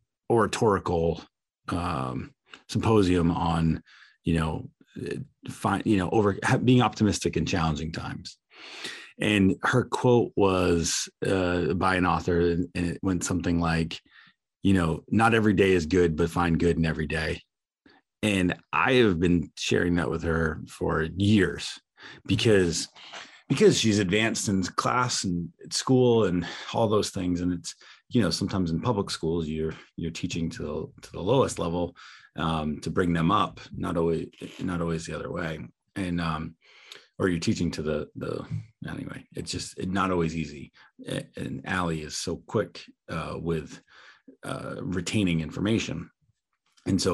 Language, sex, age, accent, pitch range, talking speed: English, male, 30-49, American, 80-95 Hz, 155 wpm